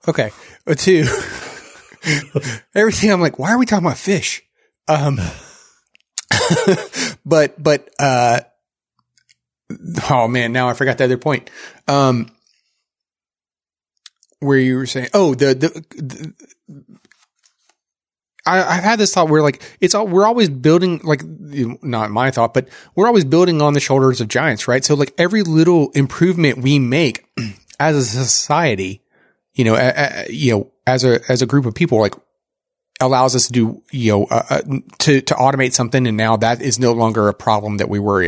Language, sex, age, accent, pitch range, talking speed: English, male, 30-49, American, 115-150 Hz, 165 wpm